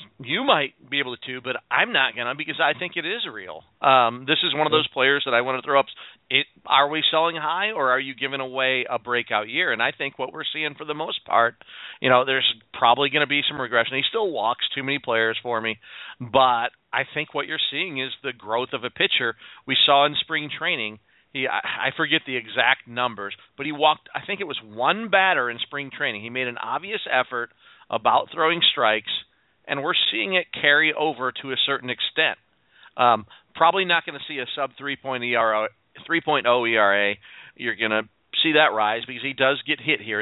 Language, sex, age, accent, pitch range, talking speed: English, male, 40-59, American, 120-150 Hz, 210 wpm